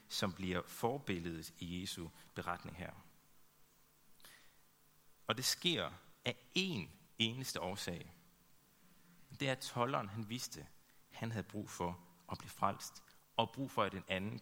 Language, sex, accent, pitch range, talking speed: Danish, male, native, 95-130 Hz, 135 wpm